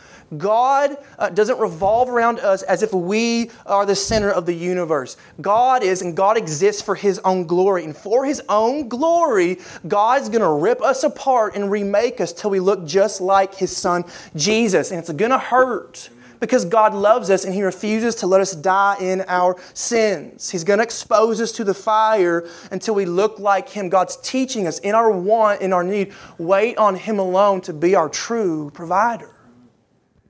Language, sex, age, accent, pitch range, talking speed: English, male, 30-49, American, 165-215 Hz, 190 wpm